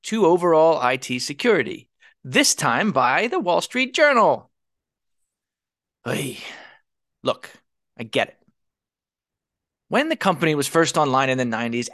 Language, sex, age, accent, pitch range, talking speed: English, male, 30-49, American, 155-245 Hz, 120 wpm